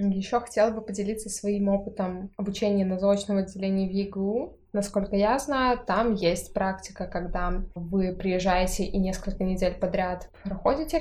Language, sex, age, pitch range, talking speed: Russian, female, 20-39, 195-240 Hz, 140 wpm